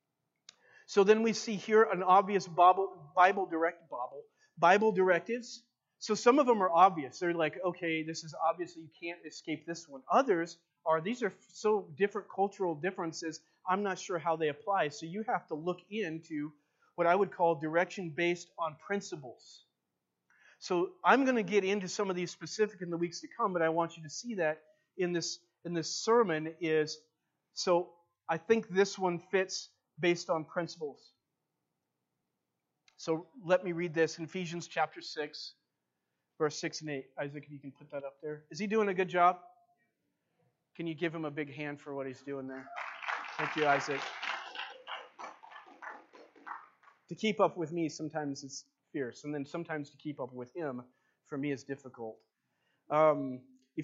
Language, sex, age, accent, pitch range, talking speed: English, male, 40-59, American, 155-190 Hz, 175 wpm